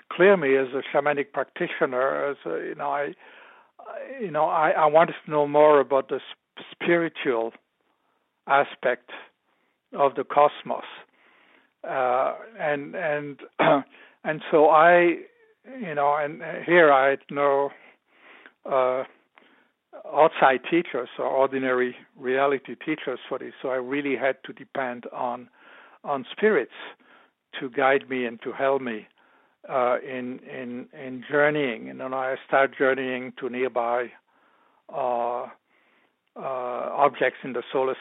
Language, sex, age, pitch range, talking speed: English, male, 60-79, 130-150 Hz, 135 wpm